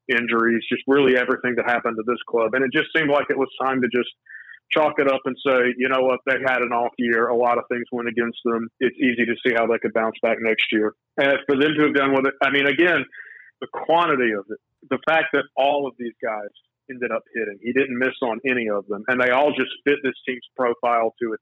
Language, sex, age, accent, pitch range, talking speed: English, male, 40-59, American, 115-130 Hz, 260 wpm